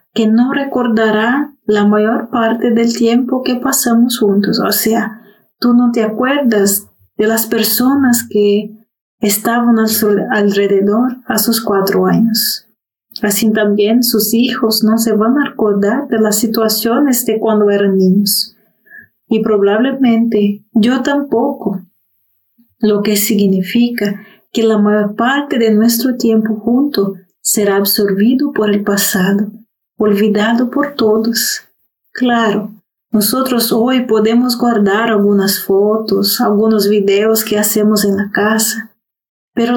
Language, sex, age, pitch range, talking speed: Spanish, female, 30-49, 205-235 Hz, 125 wpm